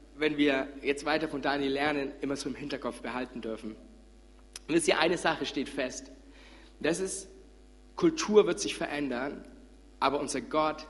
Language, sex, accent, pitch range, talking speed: German, male, German, 140-180 Hz, 165 wpm